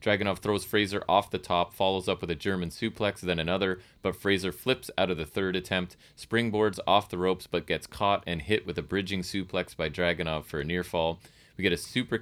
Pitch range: 85-100 Hz